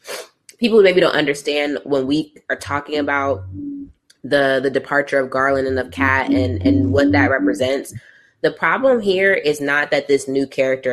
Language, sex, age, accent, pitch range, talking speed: English, female, 20-39, American, 135-160 Hz, 170 wpm